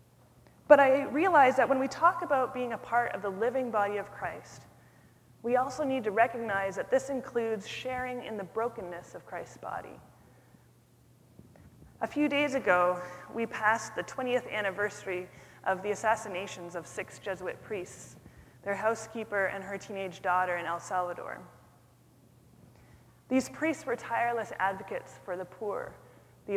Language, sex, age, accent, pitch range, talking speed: English, female, 20-39, American, 185-245 Hz, 150 wpm